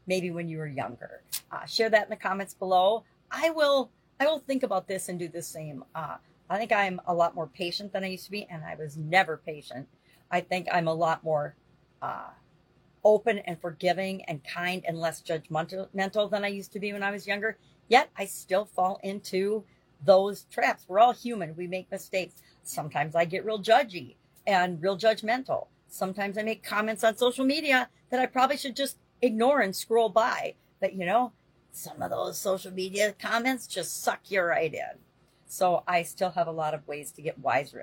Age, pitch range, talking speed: 50-69, 175-230 Hz, 200 wpm